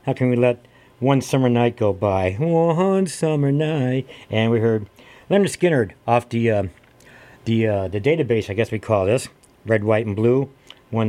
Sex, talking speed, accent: male, 185 wpm, American